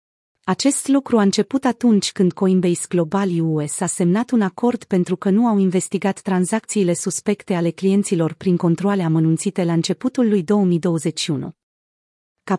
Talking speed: 145 wpm